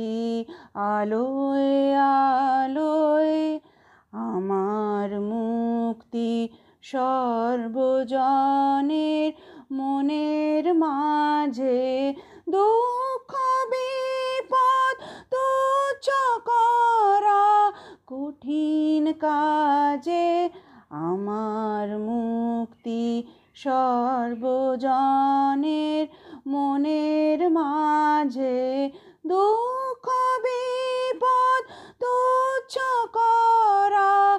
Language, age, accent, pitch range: Bengali, 40-59, native, 270-400 Hz